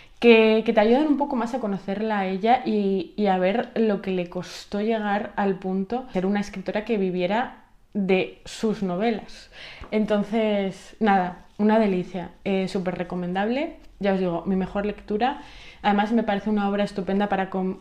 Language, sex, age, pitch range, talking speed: Spanish, female, 20-39, 185-225 Hz, 175 wpm